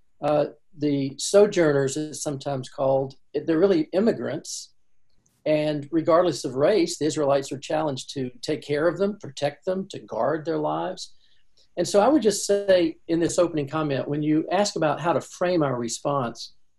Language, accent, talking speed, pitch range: English, American, 170 wpm, 140-185 Hz